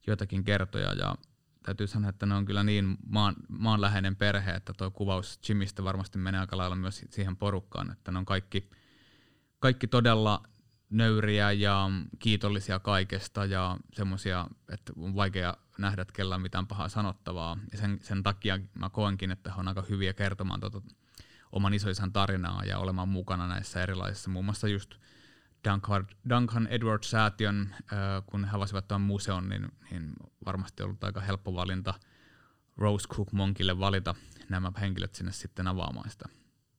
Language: Finnish